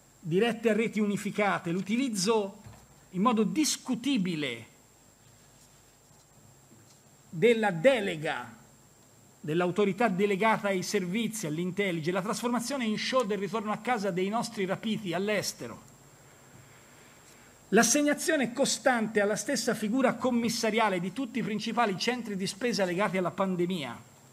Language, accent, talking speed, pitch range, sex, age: Italian, native, 105 wpm, 155-220 Hz, male, 50-69